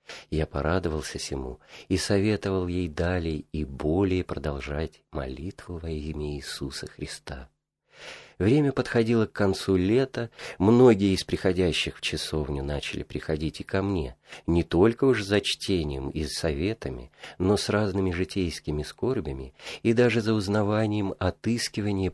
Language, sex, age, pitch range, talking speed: Russian, male, 40-59, 80-105 Hz, 125 wpm